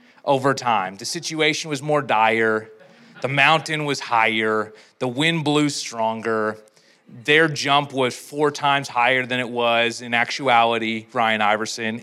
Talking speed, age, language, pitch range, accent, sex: 140 wpm, 30-49, English, 145-230 Hz, American, male